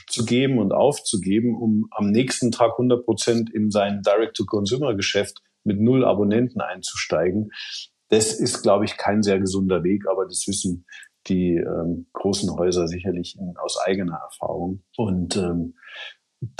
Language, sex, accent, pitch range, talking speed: German, male, German, 95-120 Hz, 140 wpm